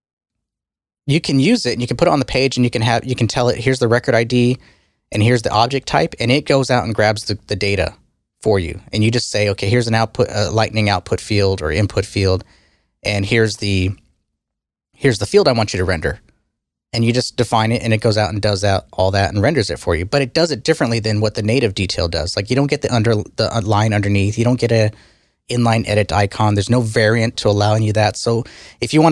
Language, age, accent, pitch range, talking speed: English, 30-49, American, 105-130 Hz, 255 wpm